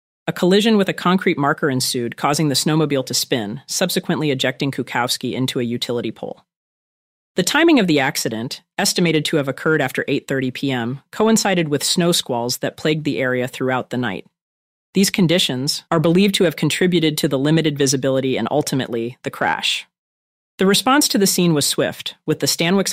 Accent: American